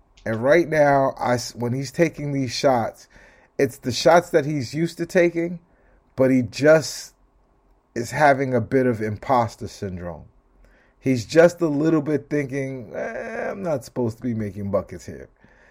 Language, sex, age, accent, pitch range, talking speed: English, male, 30-49, American, 115-160 Hz, 155 wpm